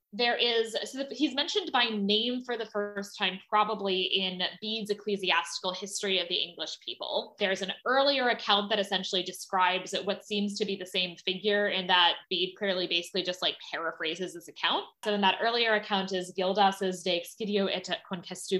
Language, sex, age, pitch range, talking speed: English, female, 20-39, 180-225 Hz, 175 wpm